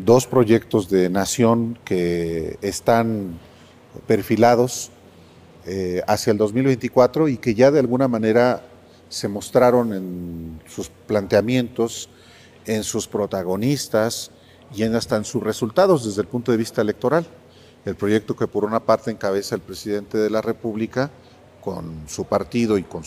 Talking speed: 140 wpm